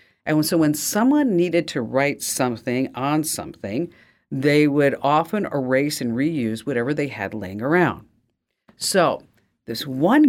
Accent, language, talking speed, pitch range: American, English, 140 wpm, 130-180 Hz